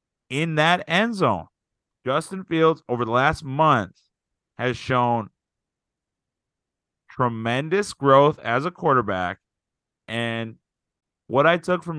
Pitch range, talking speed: 105-130 Hz, 110 wpm